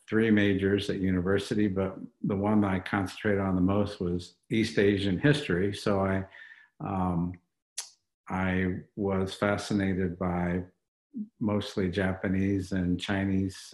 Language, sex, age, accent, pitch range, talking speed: English, male, 50-69, American, 90-105 Hz, 120 wpm